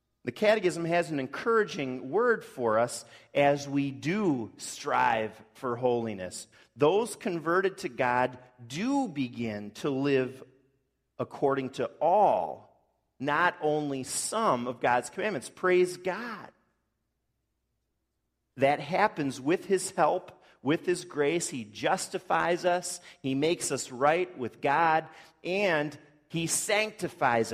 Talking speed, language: 115 wpm, English